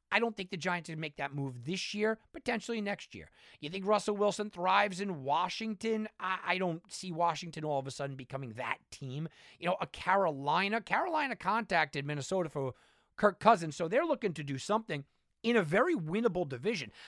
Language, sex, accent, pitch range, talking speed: English, male, American, 140-210 Hz, 190 wpm